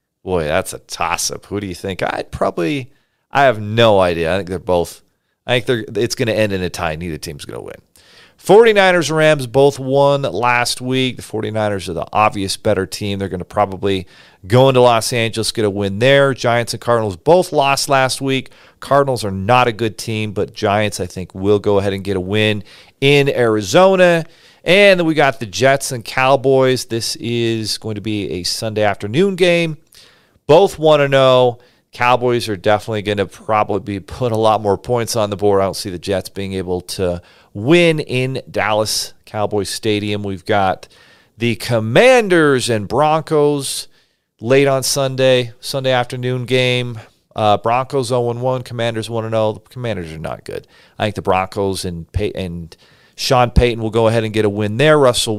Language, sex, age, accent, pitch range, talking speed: English, male, 40-59, American, 100-130 Hz, 190 wpm